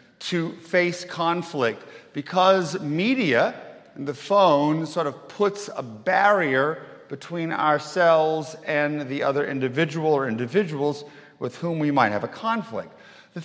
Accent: American